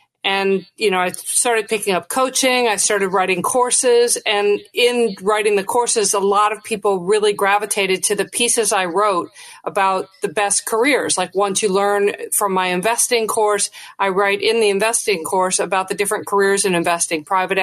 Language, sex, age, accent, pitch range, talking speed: English, female, 40-59, American, 185-210 Hz, 180 wpm